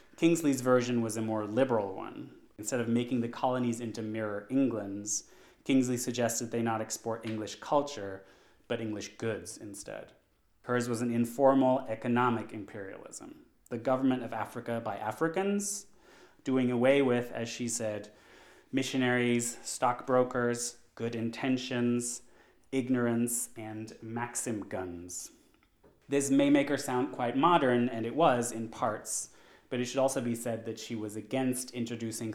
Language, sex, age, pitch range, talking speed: English, male, 30-49, 110-130 Hz, 140 wpm